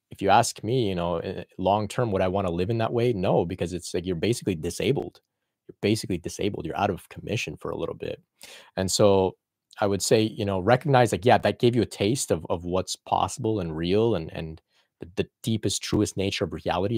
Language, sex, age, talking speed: English, male, 30-49, 225 wpm